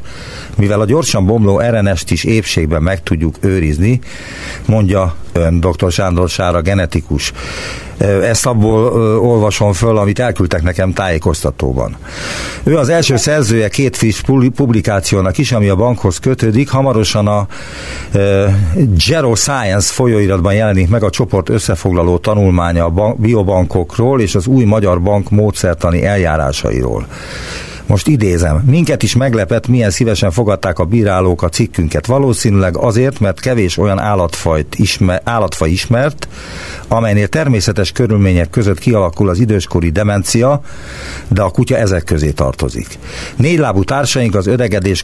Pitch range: 90-115 Hz